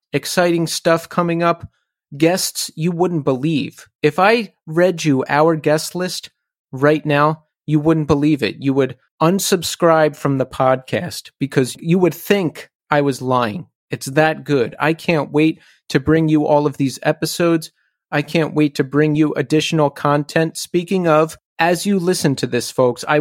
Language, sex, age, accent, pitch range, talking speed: English, male, 30-49, American, 140-170 Hz, 165 wpm